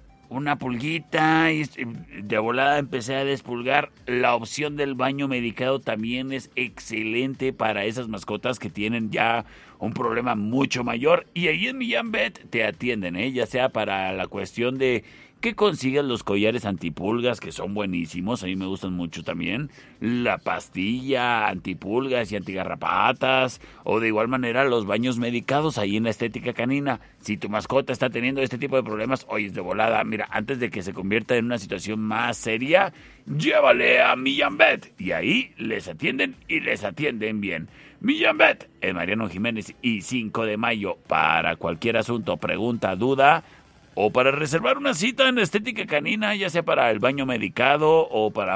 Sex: male